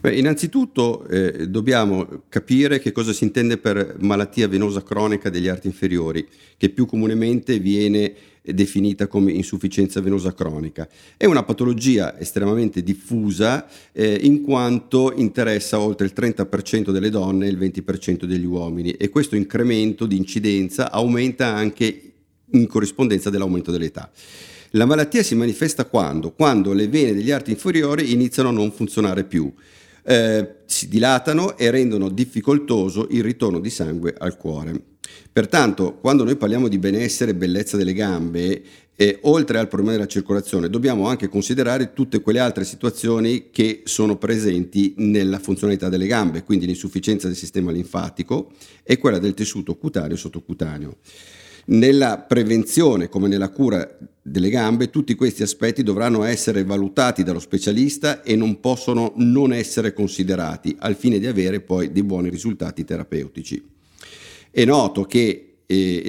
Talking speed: 145 wpm